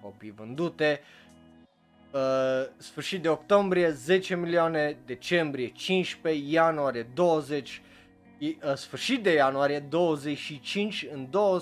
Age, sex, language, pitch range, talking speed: 20-39, male, Romanian, 120-165 Hz, 90 wpm